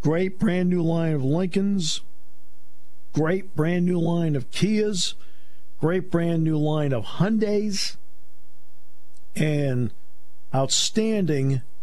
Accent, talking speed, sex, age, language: American, 85 wpm, male, 50-69, English